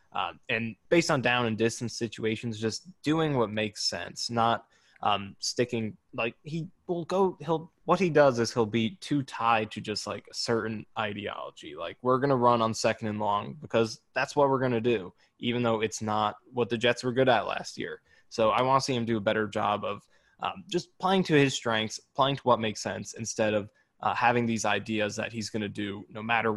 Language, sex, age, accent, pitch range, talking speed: English, male, 20-39, American, 110-130 Hz, 220 wpm